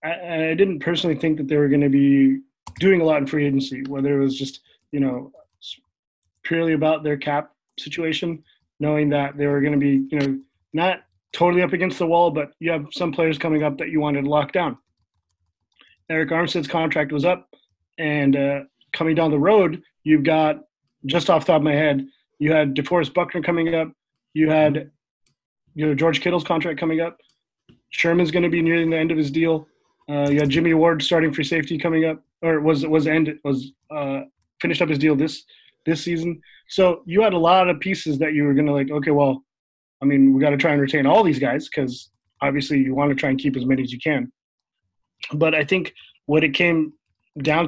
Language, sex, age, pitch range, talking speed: English, male, 20-39, 140-165 Hz, 215 wpm